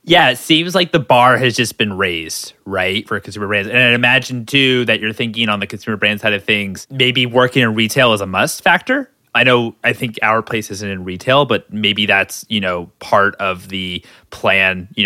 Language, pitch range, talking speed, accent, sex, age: English, 105-125 Hz, 220 wpm, American, male, 20-39